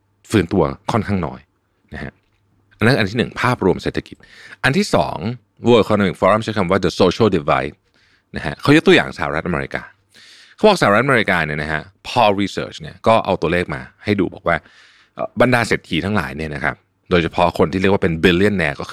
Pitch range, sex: 80-105 Hz, male